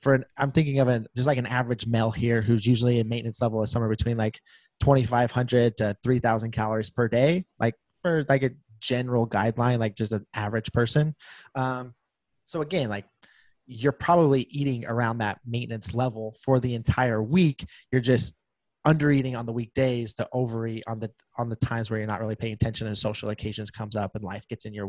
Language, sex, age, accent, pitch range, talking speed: English, male, 20-39, American, 115-135 Hz, 205 wpm